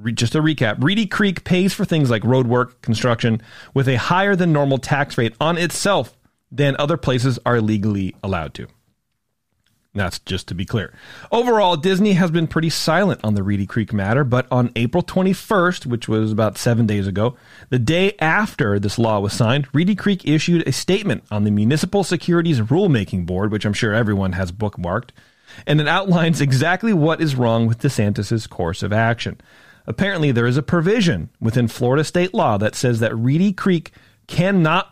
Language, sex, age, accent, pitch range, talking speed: English, male, 30-49, American, 110-165 Hz, 180 wpm